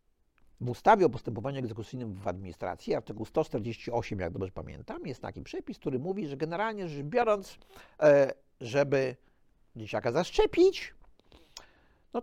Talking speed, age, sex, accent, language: 125 wpm, 50-69, male, native, Polish